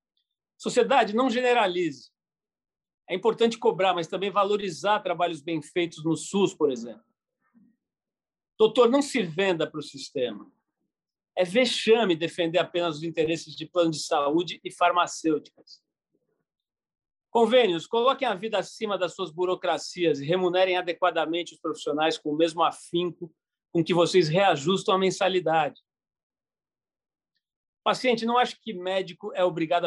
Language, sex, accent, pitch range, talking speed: Portuguese, male, Brazilian, 165-225 Hz, 130 wpm